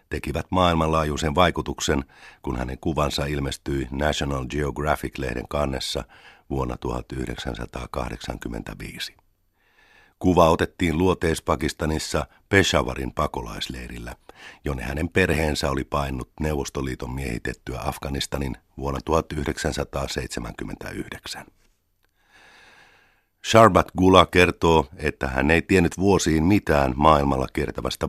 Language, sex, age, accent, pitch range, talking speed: Finnish, male, 50-69, native, 70-85 Hz, 80 wpm